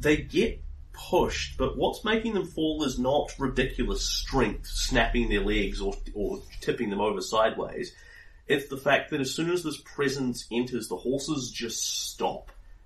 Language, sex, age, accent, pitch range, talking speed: English, male, 30-49, Australian, 105-130 Hz, 165 wpm